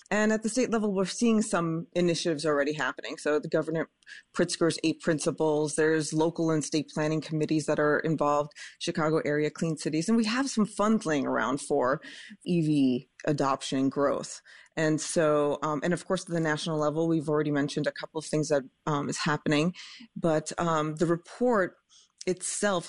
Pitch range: 150-185 Hz